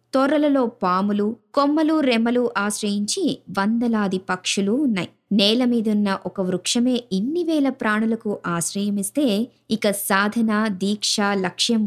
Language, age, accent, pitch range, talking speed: Telugu, 20-39, native, 200-260 Hz, 100 wpm